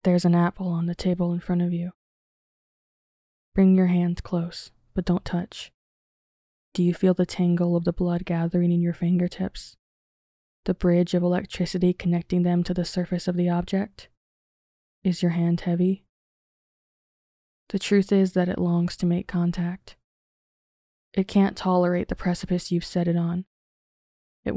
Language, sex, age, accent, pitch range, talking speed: English, female, 20-39, American, 170-180 Hz, 155 wpm